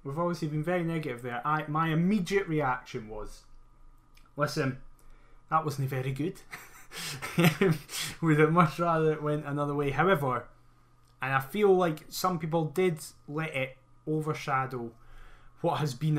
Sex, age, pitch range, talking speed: male, 20-39, 125-155 Hz, 135 wpm